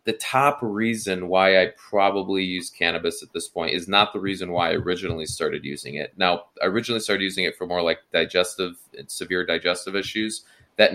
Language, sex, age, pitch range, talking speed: English, male, 20-39, 90-110 Hz, 190 wpm